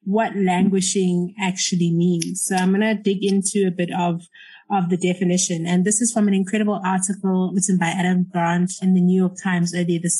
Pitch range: 180-205 Hz